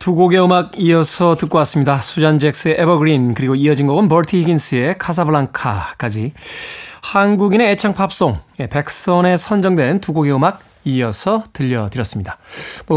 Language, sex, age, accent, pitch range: Korean, male, 20-39, native, 140-210 Hz